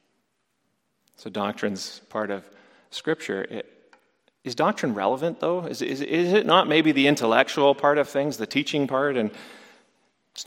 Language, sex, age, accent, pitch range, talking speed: English, male, 40-59, American, 115-170 Hz, 150 wpm